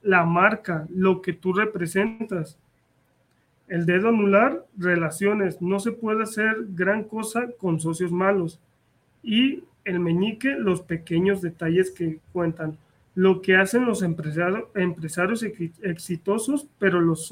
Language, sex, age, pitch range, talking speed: Spanish, male, 30-49, 170-205 Hz, 125 wpm